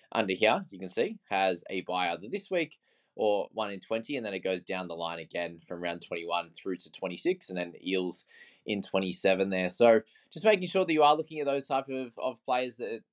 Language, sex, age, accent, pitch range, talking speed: English, male, 20-39, Australian, 95-125 Hz, 235 wpm